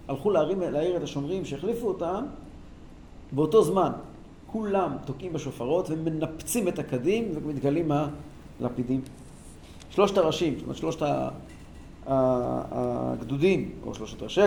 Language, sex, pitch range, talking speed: Hebrew, male, 145-200 Hz, 110 wpm